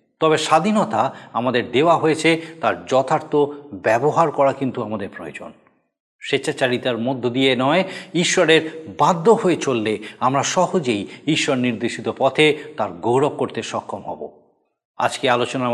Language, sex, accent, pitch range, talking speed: Bengali, male, native, 130-190 Hz, 120 wpm